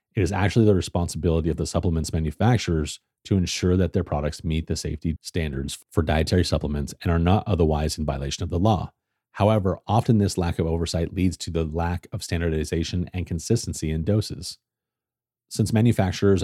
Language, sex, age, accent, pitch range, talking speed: English, male, 30-49, American, 80-100 Hz, 175 wpm